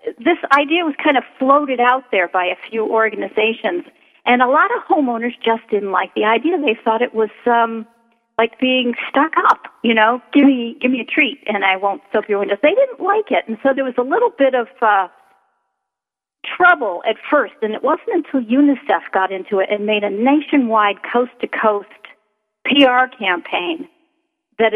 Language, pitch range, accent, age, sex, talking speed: English, 205-265 Hz, American, 50-69, female, 185 wpm